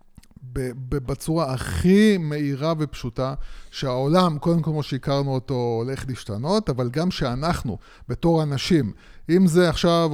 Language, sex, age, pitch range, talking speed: Hebrew, male, 20-39, 130-165 Hz, 125 wpm